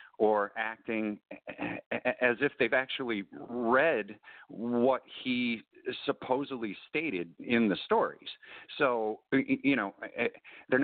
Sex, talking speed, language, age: male, 100 wpm, English, 50-69